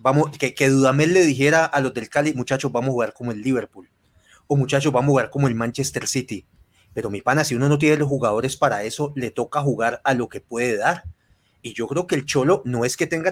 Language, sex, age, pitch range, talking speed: Spanish, male, 30-49, 125-160 Hz, 250 wpm